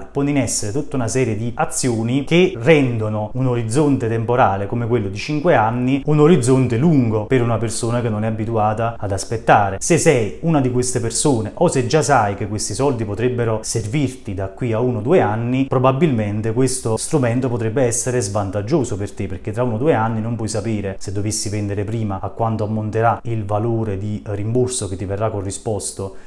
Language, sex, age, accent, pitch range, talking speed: Italian, male, 30-49, native, 105-130 Hz, 185 wpm